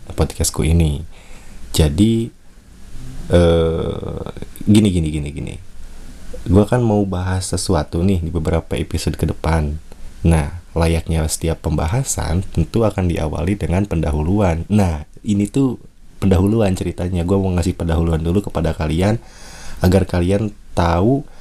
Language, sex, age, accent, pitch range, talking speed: Indonesian, male, 20-39, native, 80-100 Hz, 115 wpm